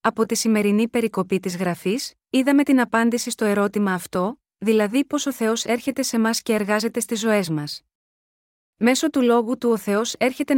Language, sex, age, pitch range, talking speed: Greek, female, 30-49, 205-250 Hz, 175 wpm